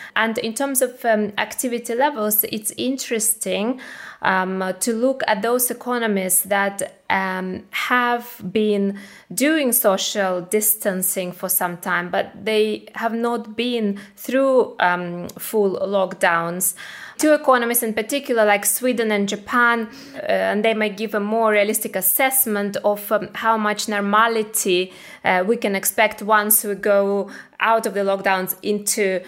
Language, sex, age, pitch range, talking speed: English, female, 20-39, 190-225 Hz, 140 wpm